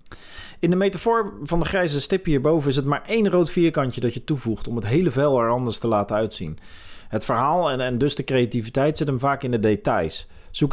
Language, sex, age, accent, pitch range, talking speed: Dutch, male, 40-59, Dutch, 115-155 Hz, 225 wpm